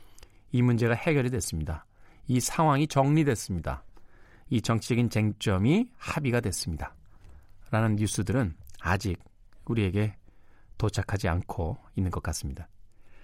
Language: Korean